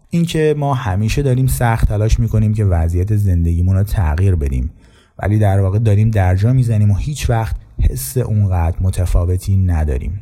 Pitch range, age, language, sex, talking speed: 90-110 Hz, 30-49, Persian, male, 155 wpm